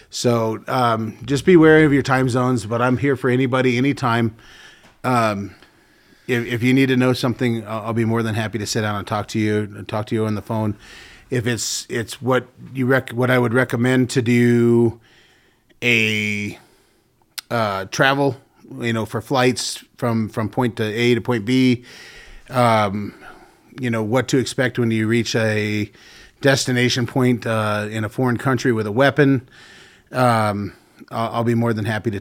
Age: 30-49